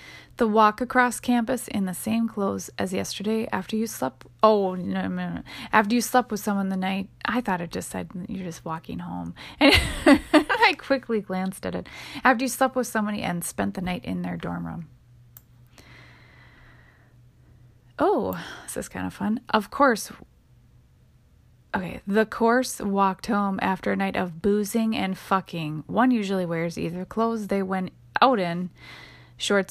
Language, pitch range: English, 165-220 Hz